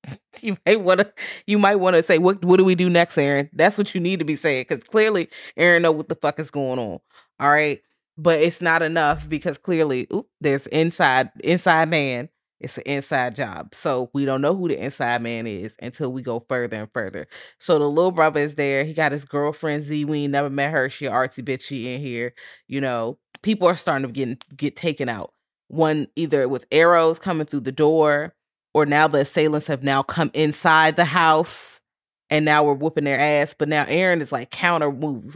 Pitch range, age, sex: 135-160 Hz, 20-39, female